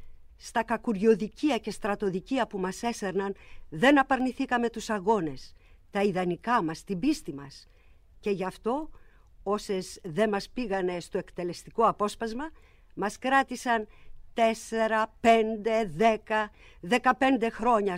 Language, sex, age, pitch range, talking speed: Greek, female, 50-69, 180-235 Hz, 115 wpm